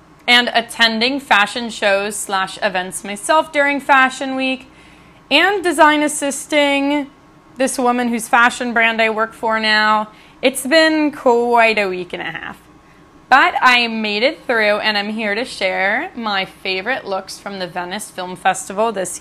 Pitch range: 190-270 Hz